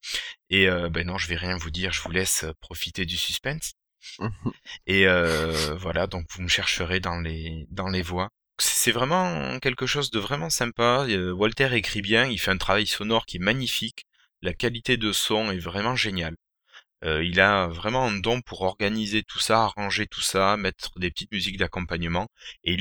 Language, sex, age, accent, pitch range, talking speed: French, male, 20-39, French, 85-110 Hz, 185 wpm